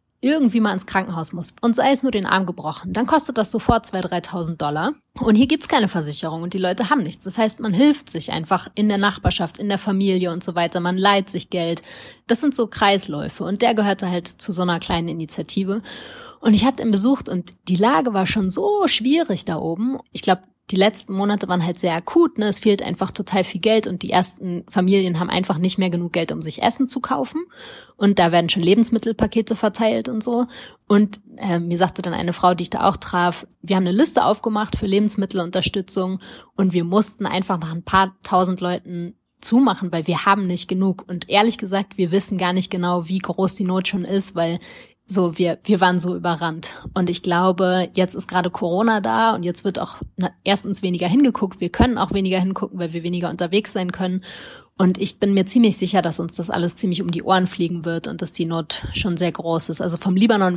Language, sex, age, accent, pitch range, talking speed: German, female, 30-49, German, 175-215 Hz, 220 wpm